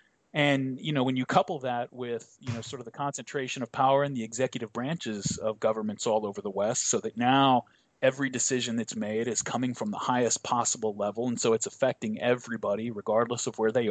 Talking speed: 210 wpm